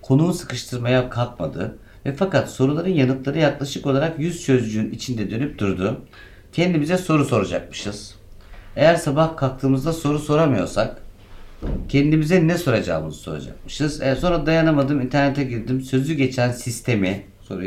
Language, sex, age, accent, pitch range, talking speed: Turkish, male, 50-69, native, 95-145 Hz, 120 wpm